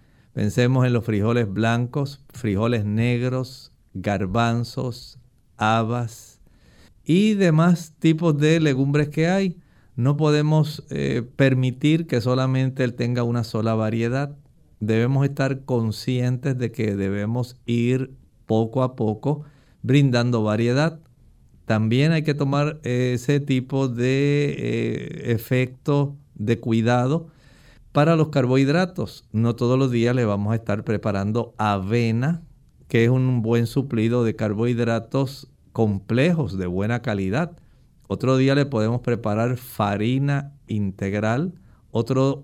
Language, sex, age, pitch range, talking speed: Spanish, male, 50-69, 115-140 Hz, 115 wpm